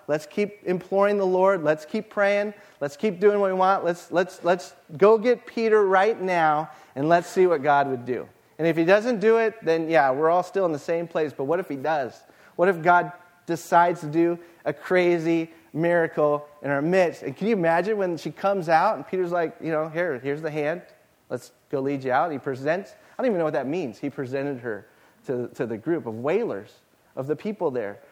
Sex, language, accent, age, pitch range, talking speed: male, English, American, 30-49, 150-195 Hz, 225 wpm